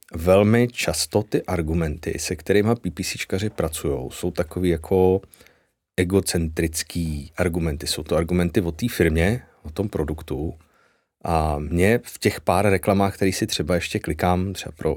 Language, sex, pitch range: Czech, male, 80-95 Hz